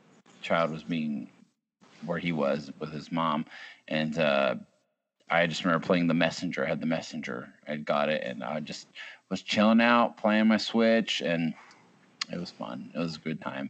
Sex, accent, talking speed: male, American, 190 wpm